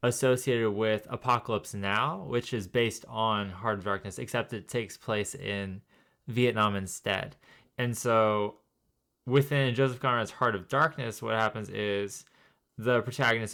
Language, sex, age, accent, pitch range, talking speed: English, male, 20-39, American, 105-130 Hz, 135 wpm